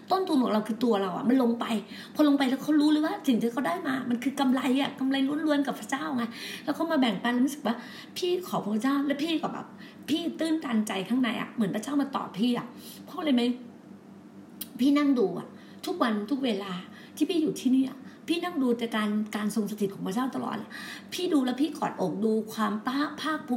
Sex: female